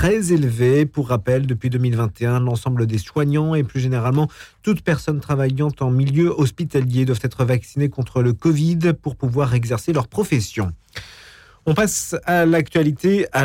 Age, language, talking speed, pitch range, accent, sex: 50-69, French, 150 wpm, 120-150 Hz, French, male